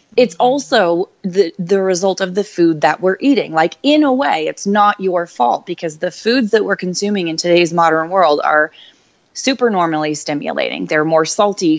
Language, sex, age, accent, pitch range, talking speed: English, female, 20-39, American, 160-205 Hz, 180 wpm